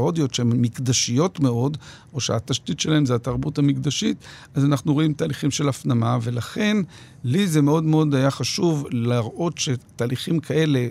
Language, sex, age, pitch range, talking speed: Hebrew, male, 50-69, 130-160 Hz, 140 wpm